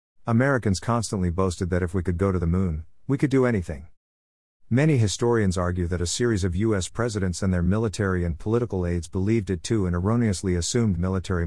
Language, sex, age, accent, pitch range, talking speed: English, male, 50-69, American, 90-115 Hz, 195 wpm